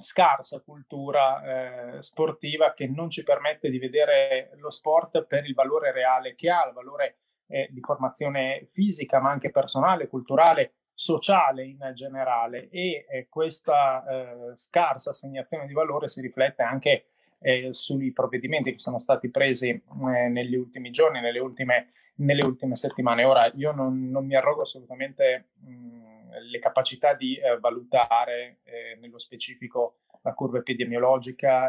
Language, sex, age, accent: Italian, male, 30-49, native